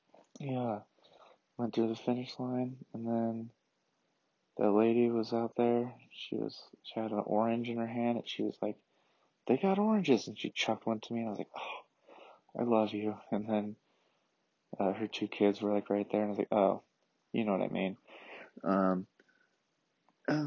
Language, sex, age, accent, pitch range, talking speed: English, male, 30-49, American, 110-135 Hz, 190 wpm